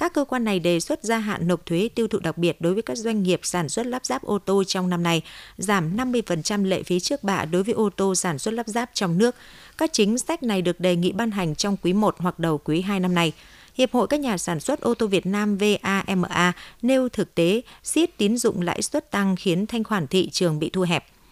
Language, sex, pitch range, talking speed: Vietnamese, female, 175-220 Hz, 255 wpm